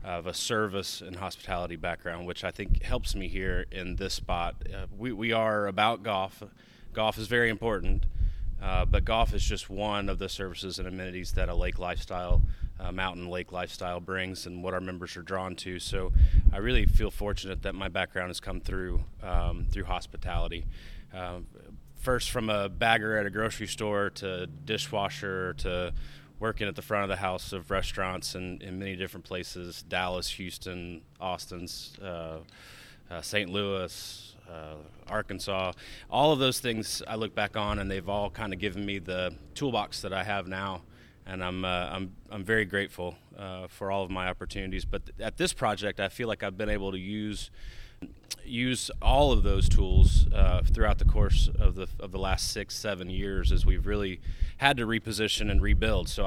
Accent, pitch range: American, 90-105 Hz